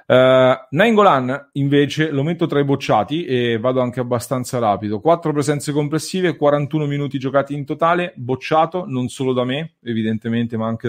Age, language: 30-49, English